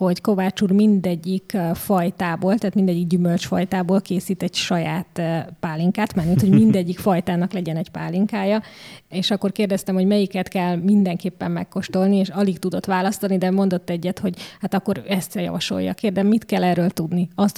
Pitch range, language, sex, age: 180-200 Hz, Hungarian, female, 20-39